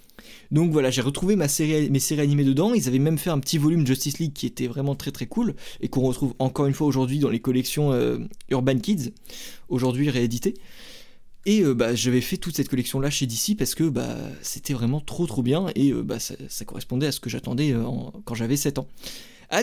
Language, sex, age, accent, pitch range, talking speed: French, male, 20-39, French, 130-180 Hz, 230 wpm